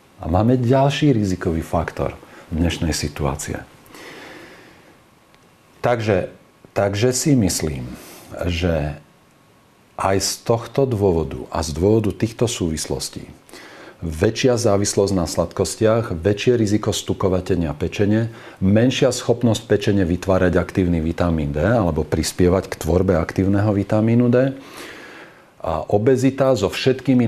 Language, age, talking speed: Slovak, 40-59, 105 wpm